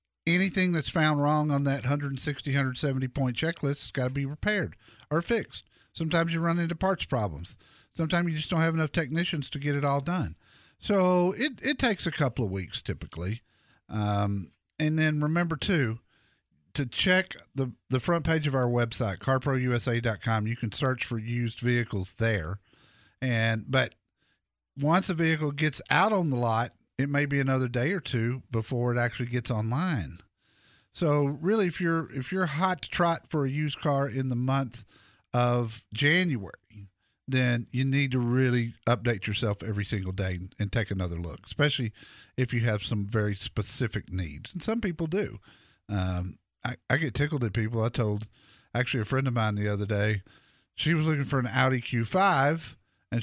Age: 50-69